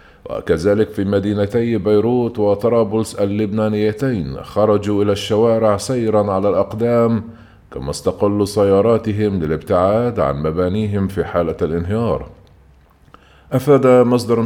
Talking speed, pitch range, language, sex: 95 wpm, 100-115 Hz, Arabic, male